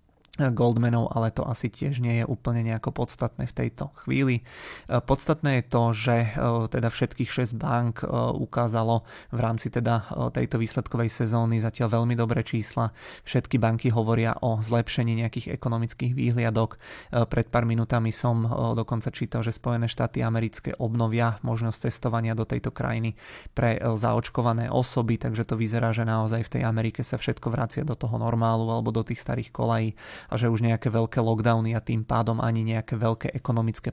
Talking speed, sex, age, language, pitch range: 160 wpm, male, 30-49, Czech, 115-125 Hz